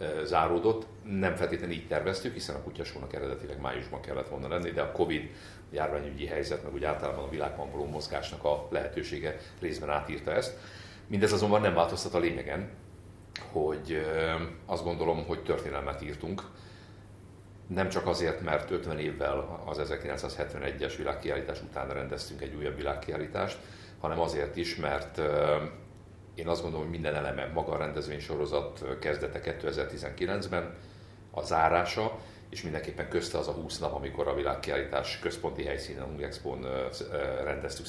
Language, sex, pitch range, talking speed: Hungarian, male, 75-100 Hz, 135 wpm